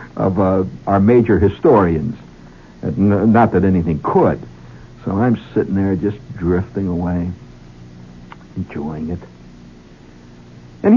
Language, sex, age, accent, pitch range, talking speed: English, male, 60-79, American, 90-125 Hz, 115 wpm